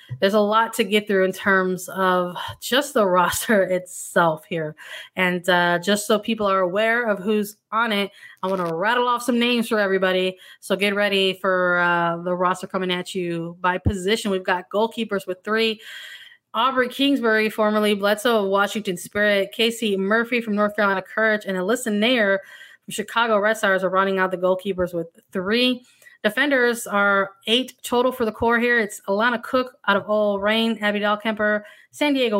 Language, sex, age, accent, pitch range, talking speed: English, female, 20-39, American, 195-230 Hz, 180 wpm